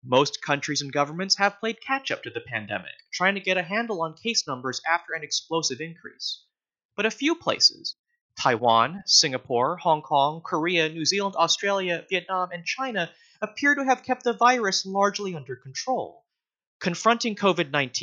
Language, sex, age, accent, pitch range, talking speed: English, male, 30-49, American, 150-215 Hz, 155 wpm